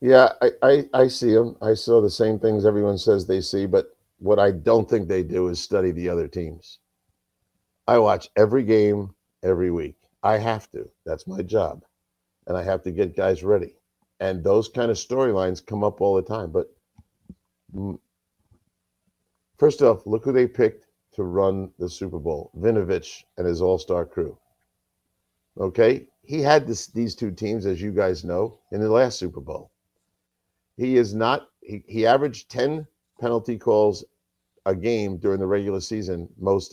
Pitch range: 95-120 Hz